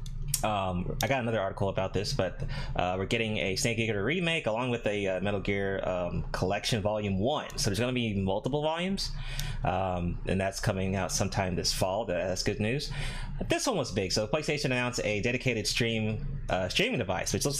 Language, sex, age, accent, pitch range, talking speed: English, male, 20-39, American, 95-135 Hz, 200 wpm